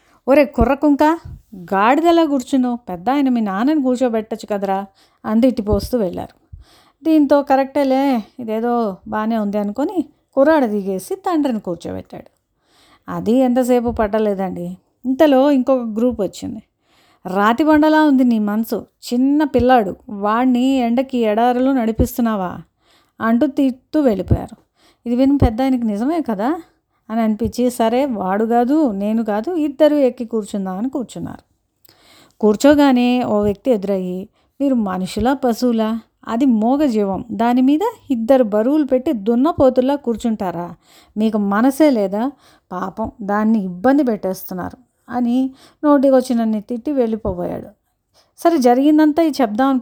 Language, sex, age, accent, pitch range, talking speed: Telugu, female, 30-49, native, 215-275 Hz, 110 wpm